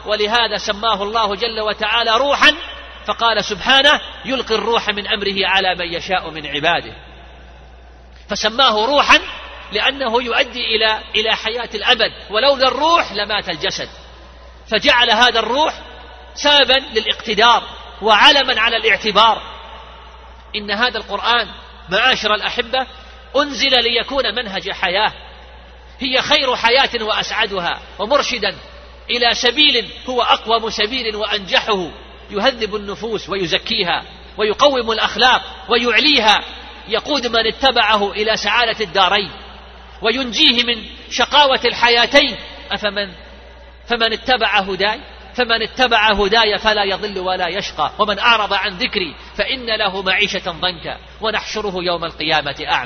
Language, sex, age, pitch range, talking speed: Arabic, male, 40-59, 195-240 Hz, 110 wpm